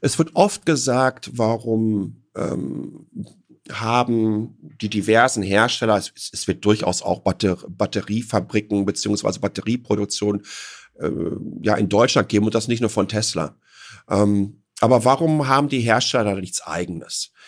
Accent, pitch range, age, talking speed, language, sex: German, 105-125 Hz, 50-69, 125 wpm, German, male